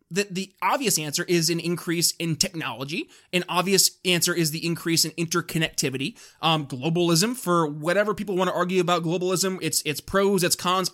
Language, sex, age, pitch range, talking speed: English, male, 20-39, 165-205 Hz, 175 wpm